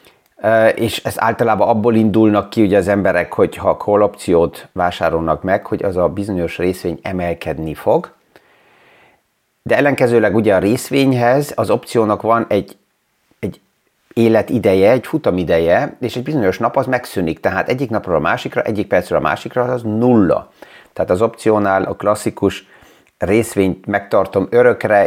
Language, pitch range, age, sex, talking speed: Hungarian, 95-115 Hz, 30-49, male, 140 wpm